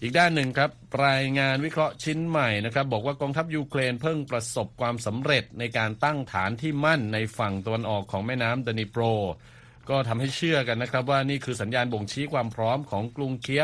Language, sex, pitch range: Thai, male, 105-130 Hz